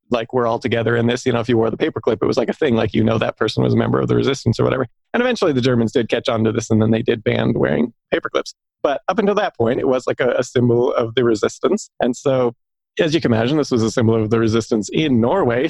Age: 30-49